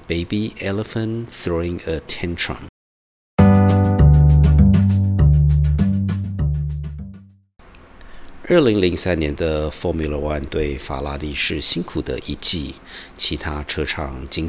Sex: male